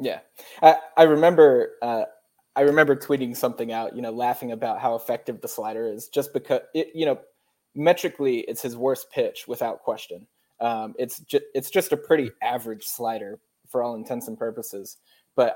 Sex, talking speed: male, 175 wpm